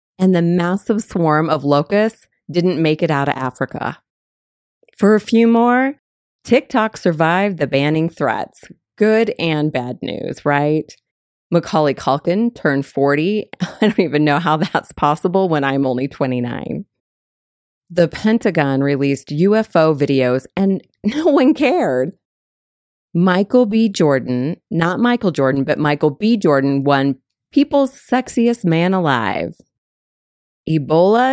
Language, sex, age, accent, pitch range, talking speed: English, female, 30-49, American, 140-195 Hz, 125 wpm